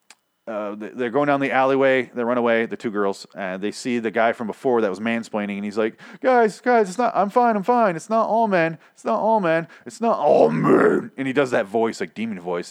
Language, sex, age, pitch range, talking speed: English, male, 30-49, 125-175 Hz, 245 wpm